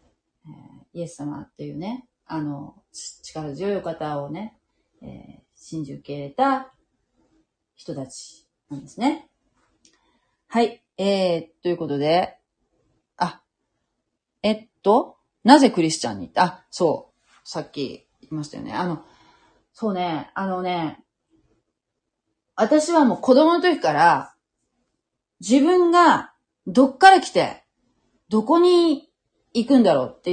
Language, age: Japanese, 30-49